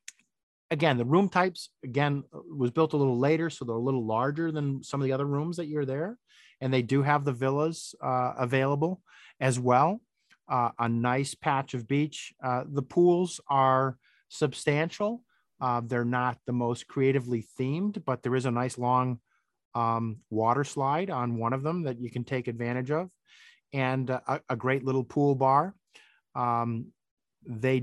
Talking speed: 170 wpm